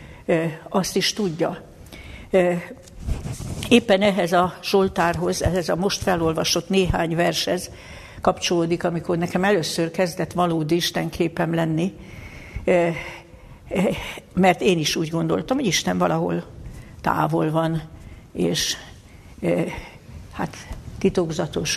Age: 60-79